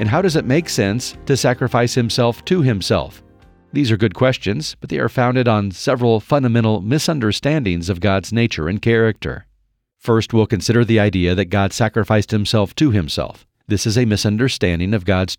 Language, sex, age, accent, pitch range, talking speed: English, male, 40-59, American, 100-120 Hz, 175 wpm